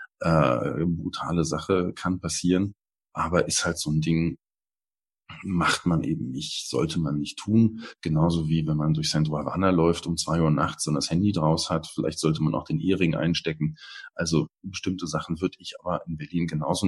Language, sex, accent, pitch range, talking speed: German, male, German, 80-95 Hz, 185 wpm